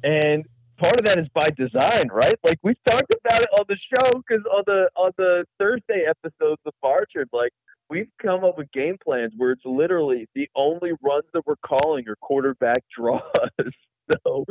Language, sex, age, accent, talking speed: English, male, 40-59, American, 185 wpm